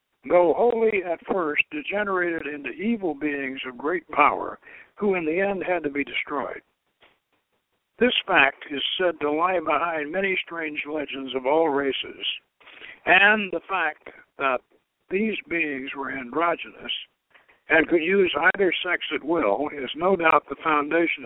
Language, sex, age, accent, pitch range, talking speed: English, male, 60-79, American, 150-205 Hz, 145 wpm